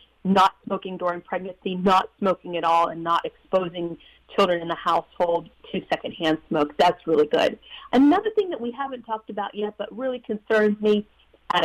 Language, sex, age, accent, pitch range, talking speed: English, female, 40-59, American, 185-225 Hz, 175 wpm